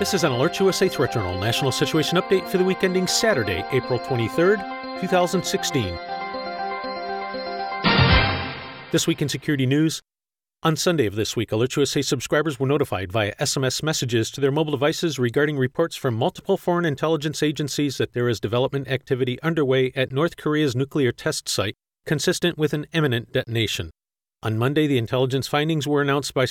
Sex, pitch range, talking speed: male, 120-155 Hz, 165 wpm